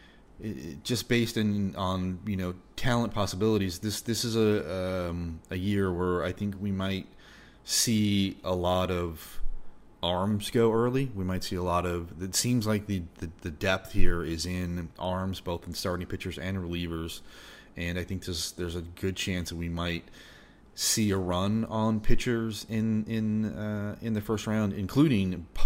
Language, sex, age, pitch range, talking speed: English, male, 30-49, 80-100 Hz, 180 wpm